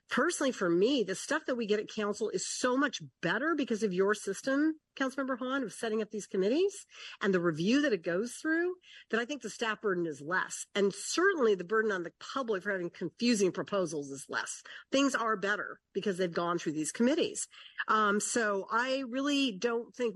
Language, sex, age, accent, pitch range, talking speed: English, female, 50-69, American, 190-245 Hz, 200 wpm